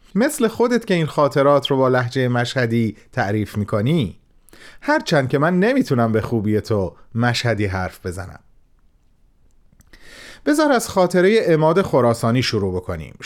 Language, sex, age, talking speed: Persian, male, 30-49, 125 wpm